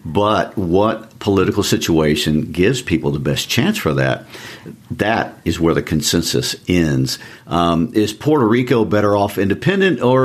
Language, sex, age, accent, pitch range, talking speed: English, male, 50-69, American, 80-110 Hz, 145 wpm